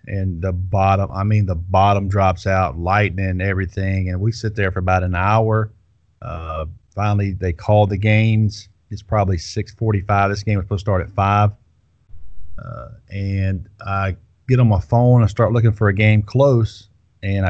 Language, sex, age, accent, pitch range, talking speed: English, male, 40-59, American, 95-110 Hz, 180 wpm